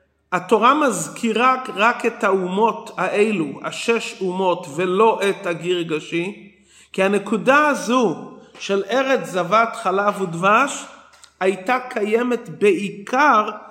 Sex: male